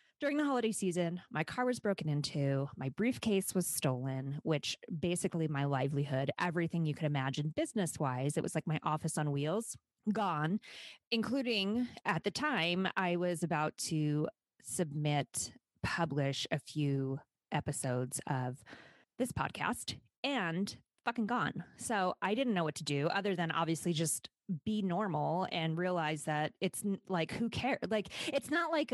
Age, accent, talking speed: 20-39, American, 150 wpm